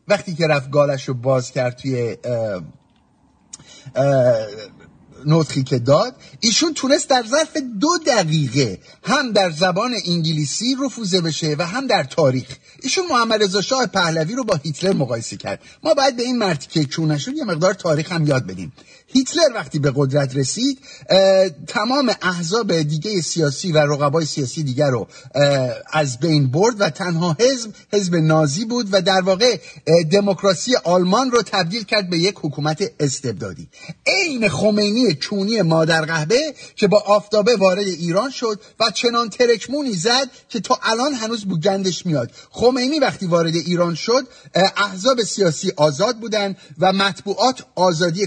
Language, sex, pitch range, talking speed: English, male, 155-230 Hz, 145 wpm